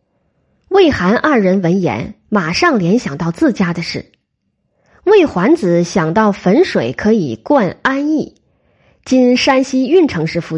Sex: female